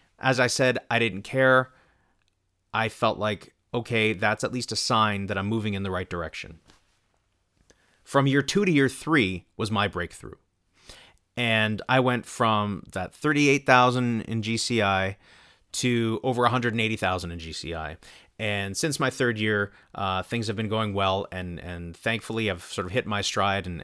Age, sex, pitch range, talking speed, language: 30-49, male, 100-125 Hz, 165 wpm, English